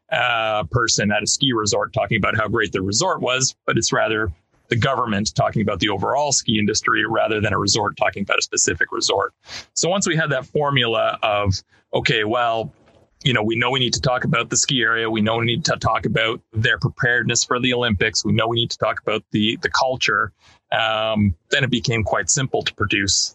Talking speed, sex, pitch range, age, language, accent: 220 wpm, male, 105-130 Hz, 30-49, English, American